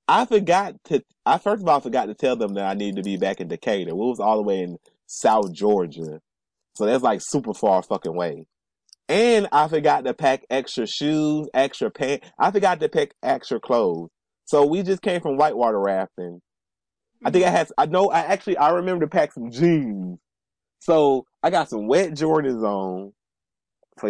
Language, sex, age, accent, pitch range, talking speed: English, male, 30-49, American, 95-155 Hz, 195 wpm